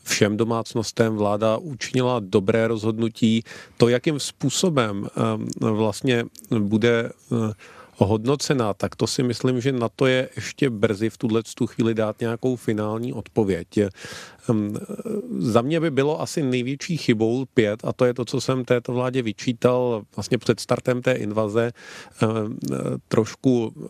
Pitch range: 110-125 Hz